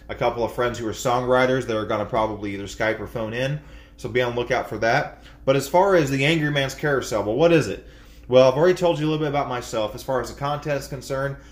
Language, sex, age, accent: English, male, 30-49, American